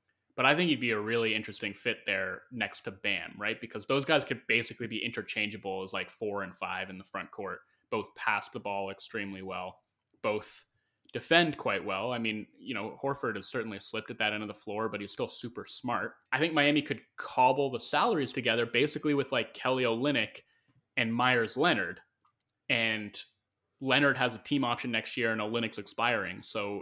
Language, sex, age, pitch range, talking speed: English, male, 20-39, 105-130 Hz, 195 wpm